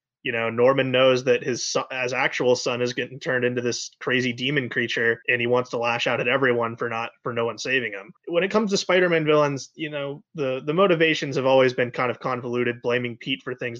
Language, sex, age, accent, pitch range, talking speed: English, male, 20-39, American, 120-145 Hz, 230 wpm